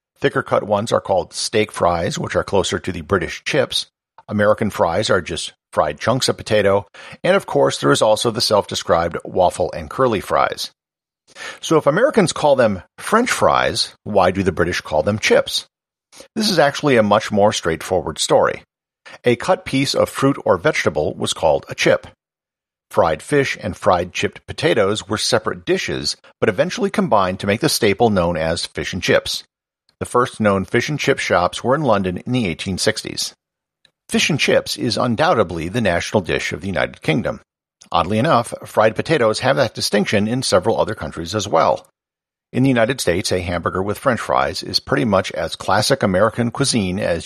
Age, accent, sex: 50-69, American, male